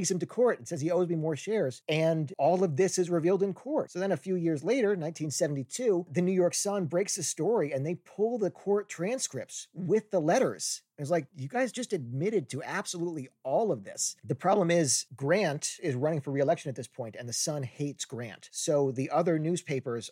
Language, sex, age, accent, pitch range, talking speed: English, male, 40-59, American, 140-190 Hz, 215 wpm